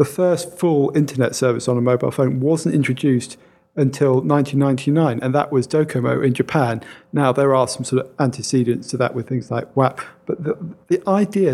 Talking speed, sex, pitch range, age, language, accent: 185 wpm, male, 120-140 Hz, 40-59, English, British